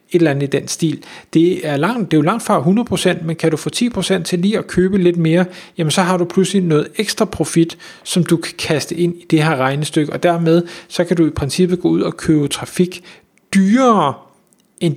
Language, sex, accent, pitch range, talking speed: Danish, male, native, 150-180 Hz, 230 wpm